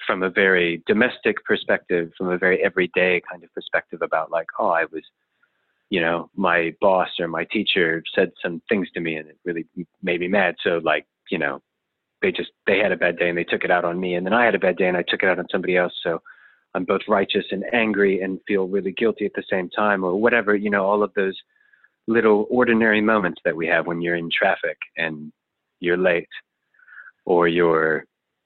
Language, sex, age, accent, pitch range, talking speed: English, male, 30-49, American, 85-110 Hz, 220 wpm